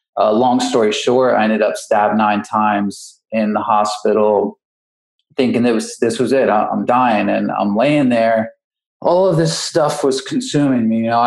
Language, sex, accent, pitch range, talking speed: English, male, American, 115-145 Hz, 185 wpm